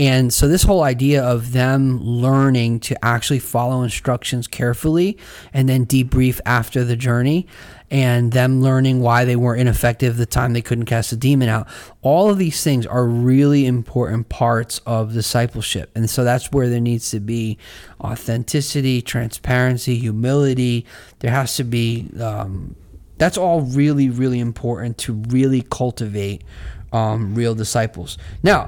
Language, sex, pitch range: English, male, 115-130 Hz